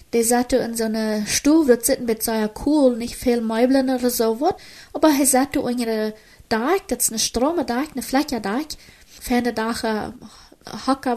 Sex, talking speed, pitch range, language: female, 195 wpm, 215-260 Hz, German